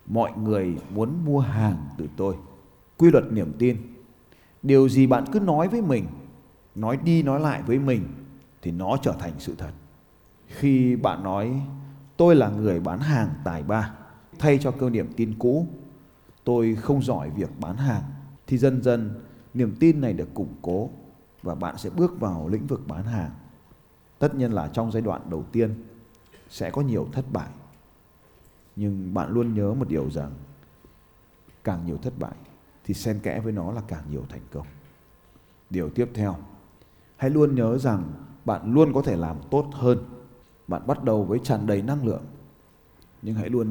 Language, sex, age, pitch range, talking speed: Vietnamese, male, 20-39, 95-135 Hz, 175 wpm